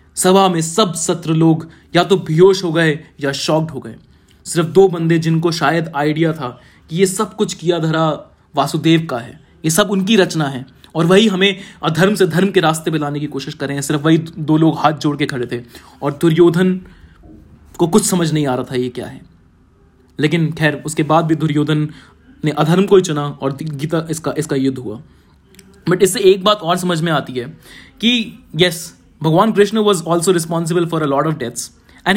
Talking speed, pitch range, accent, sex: 205 wpm, 150-185 Hz, native, male